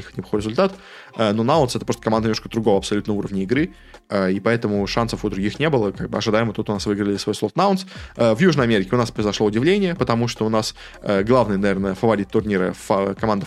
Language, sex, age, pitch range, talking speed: Russian, male, 20-39, 105-125 Hz, 200 wpm